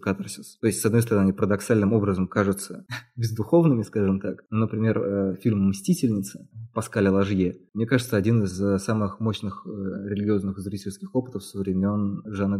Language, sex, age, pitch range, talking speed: Russian, male, 20-39, 95-115 Hz, 145 wpm